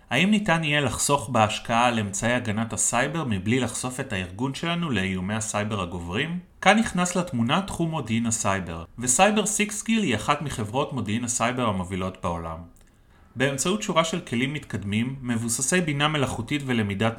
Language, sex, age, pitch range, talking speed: Hebrew, male, 30-49, 105-145 Hz, 145 wpm